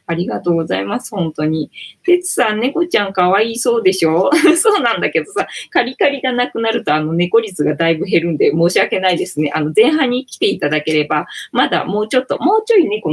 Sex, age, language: female, 20-39, Japanese